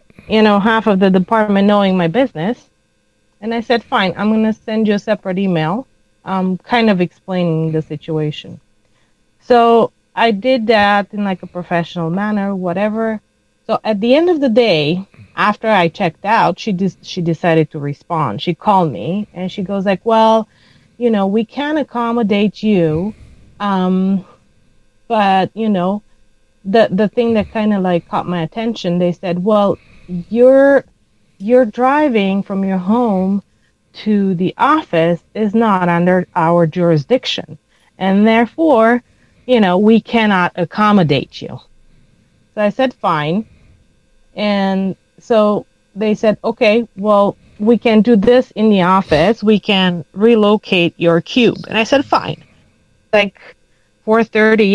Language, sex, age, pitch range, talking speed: English, female, 30-49, 175-225 Hz, 150 wpm